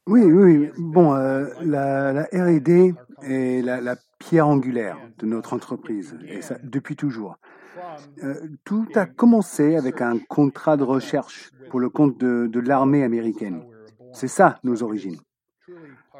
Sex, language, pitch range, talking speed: male, French, 125-165 Hz, 150 wpm